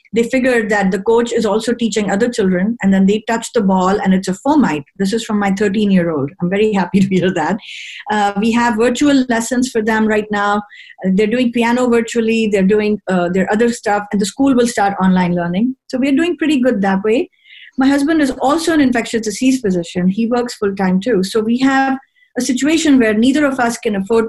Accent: Indian